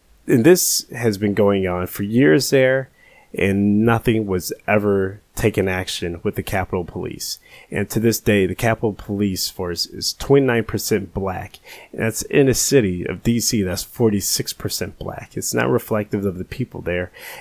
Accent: American